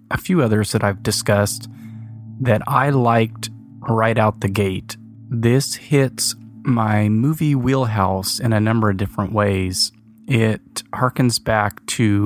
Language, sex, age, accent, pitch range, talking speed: English, male, 30-49, American, 105-130 Hz, 135 wpm